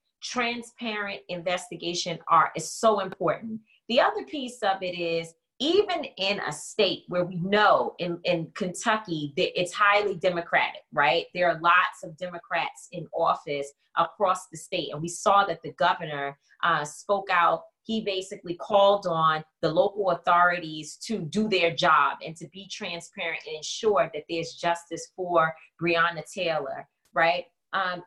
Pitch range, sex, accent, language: 170-220 Hz, female, American, English